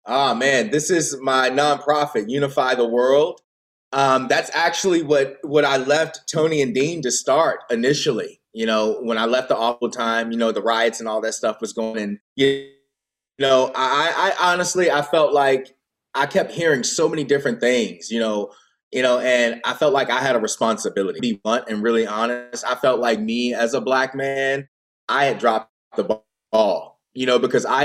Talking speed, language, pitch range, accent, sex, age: 195 wpm, English, 120-150 Hz, American, male, 20-39